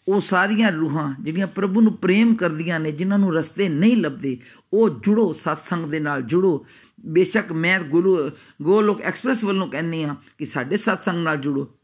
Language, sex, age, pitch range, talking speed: Punjabi, male, 50-69, 150-200 Hz, 170 wpm